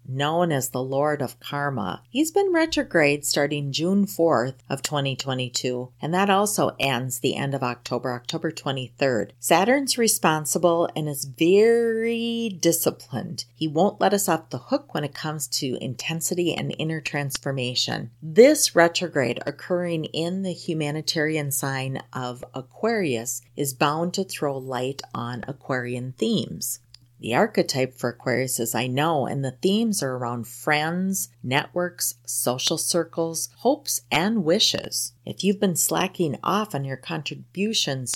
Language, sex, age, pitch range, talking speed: English, female, 40-59, 130-180 Hz, 140 wpm